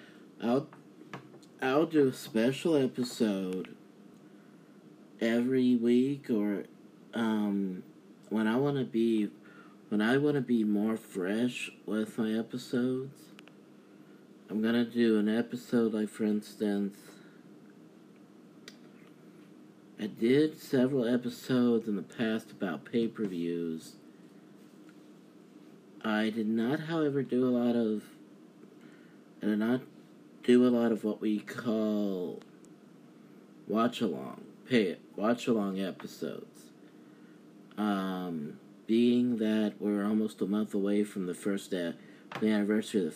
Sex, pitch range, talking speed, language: male, 100-120 Hz, 115 wpm, English